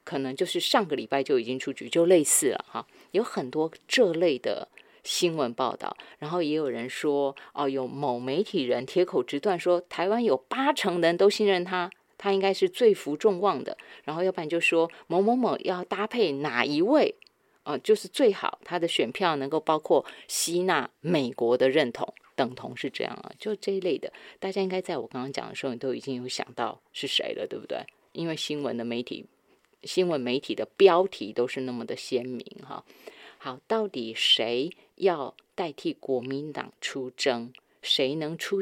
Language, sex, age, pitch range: Chinese, female, 20-39, 140-200 Hz